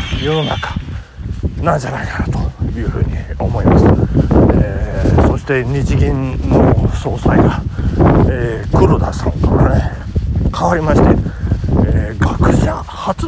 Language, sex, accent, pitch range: Japanese, male, native, 85-110 Hz